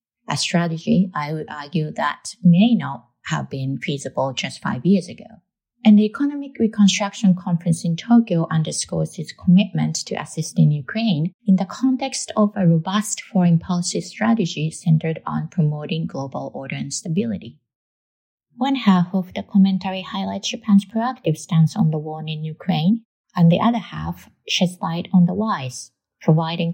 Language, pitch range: English, 155-210 Hz